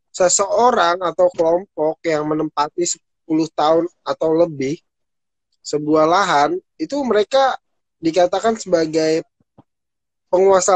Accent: native